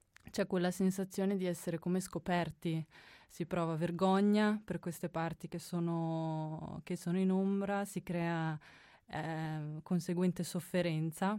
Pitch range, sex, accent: 165-195 Hz, female, native